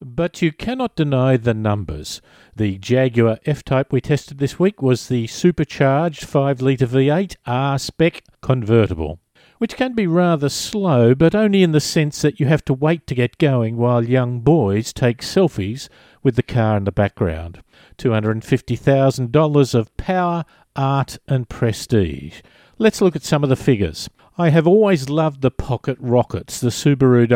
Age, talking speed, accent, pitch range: 50-69, 155 wpm, Australian, 120-155 Hz